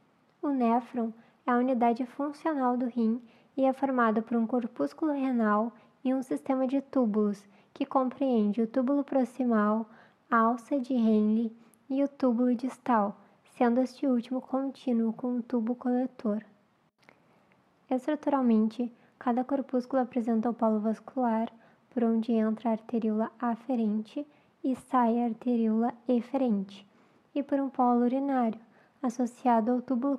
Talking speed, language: 135 wpm, Portuguese